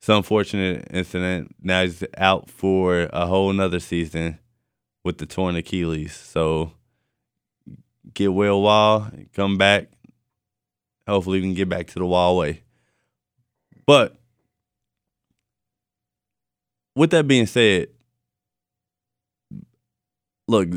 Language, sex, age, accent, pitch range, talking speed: English, male, 20-39, American, 90-115 Hz, 105 wpm